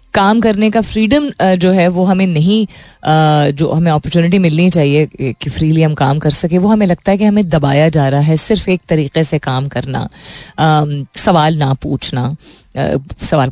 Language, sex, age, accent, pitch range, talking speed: Hindi, female, 30-49, native, 140-185 Hz, 180 wpm